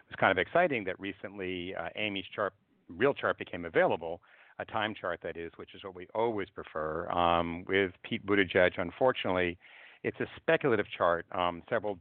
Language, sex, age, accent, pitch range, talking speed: English, male, 50-69, American, 90-100 Hz, 175 wpm